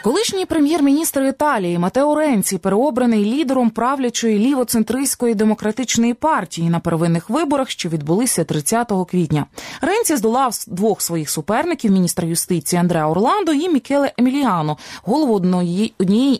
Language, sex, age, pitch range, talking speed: Ukrainian, female, 20-39, 180-265 Hz, 120 wpm